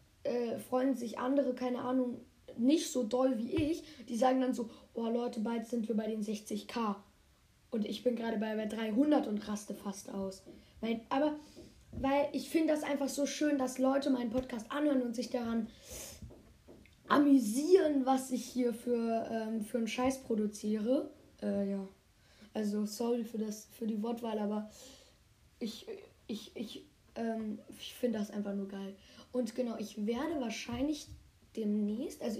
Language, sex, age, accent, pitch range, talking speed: German, female, 10-29, German, 225-270 Hz, 160 wpm